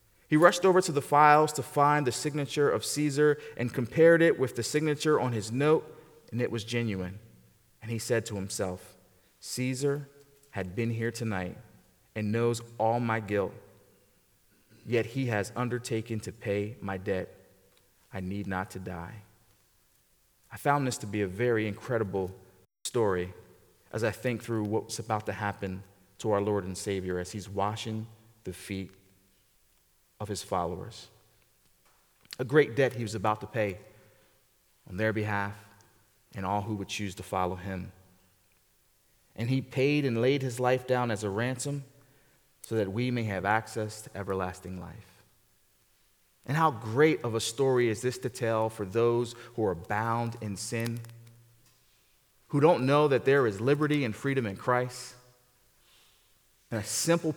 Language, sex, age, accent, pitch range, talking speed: English, male, 30-49, American, 100-125 Hz, 160 wpm